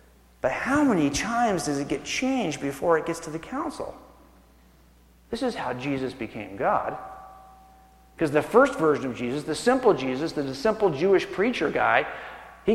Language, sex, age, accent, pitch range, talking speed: English, male, 40-59, American, 135-195 Hz, 165 wpm